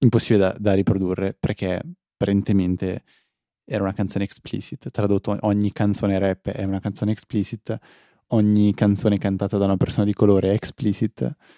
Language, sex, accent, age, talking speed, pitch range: Italian, male, native, 20-39, 145 wpm, 100-115 Hz